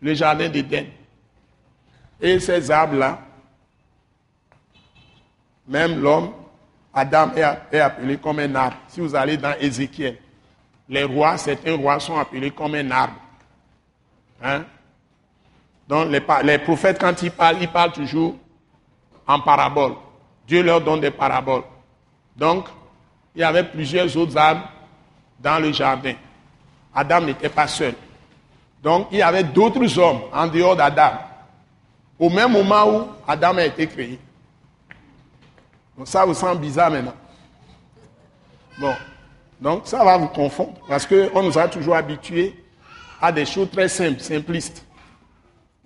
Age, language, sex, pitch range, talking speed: 60-79, French, male, 135-170 Hz, 135 wpm